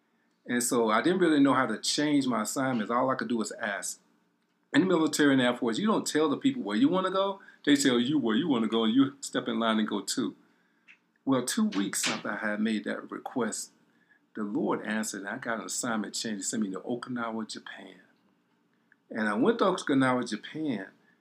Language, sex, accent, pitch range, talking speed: English, male, American, 105-140 Hz, 225 wpm